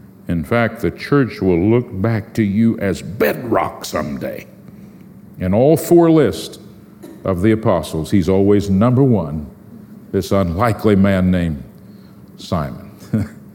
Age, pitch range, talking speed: 50-69, 100-145 Hz, 125 wpm